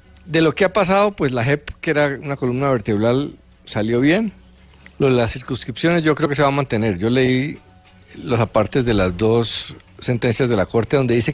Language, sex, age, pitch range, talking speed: Spanish, male, 50-69, 95-140 Hz, 205 wpm